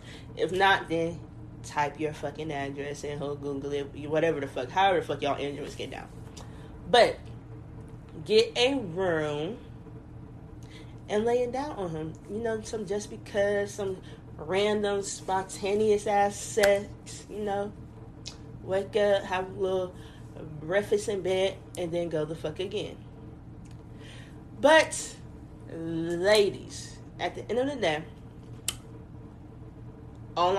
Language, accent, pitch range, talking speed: English, American, 150-230 Hz, 130 wpm